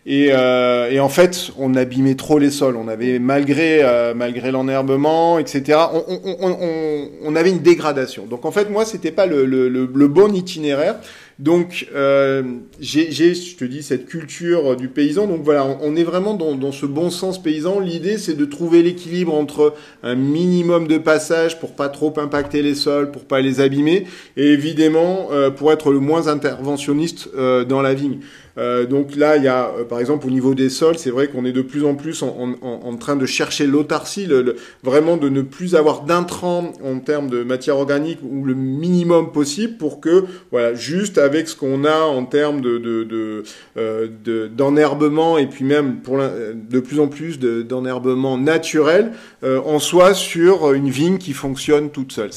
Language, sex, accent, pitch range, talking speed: French, male, French, 135-165 Hz, 185 wpm